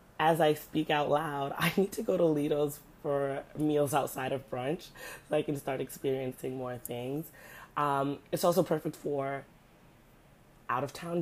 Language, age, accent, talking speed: English, 20-39, American, 155 wpm